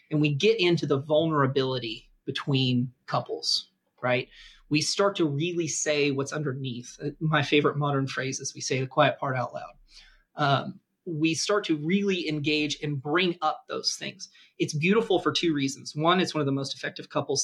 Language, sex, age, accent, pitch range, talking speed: English, male, 30-49, American, 140-165 Hz, 180 wpm